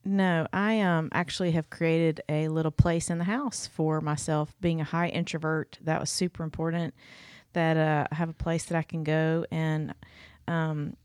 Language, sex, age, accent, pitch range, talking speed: English, female, 30-49, American, 150-165 Hz, 185 wpm